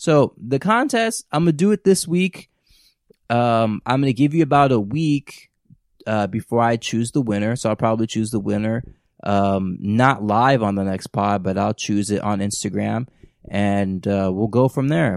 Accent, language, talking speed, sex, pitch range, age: American, English, 200 wpm, male, 105-130 Hz, 20-39